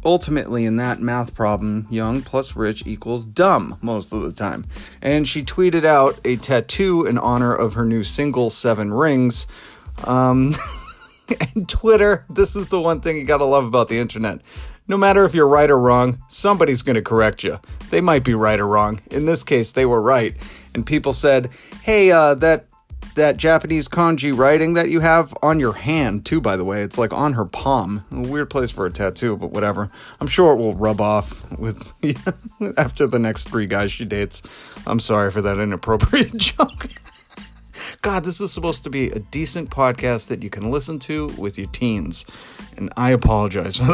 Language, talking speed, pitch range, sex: English, 190 wpm, 110-155 Hz, male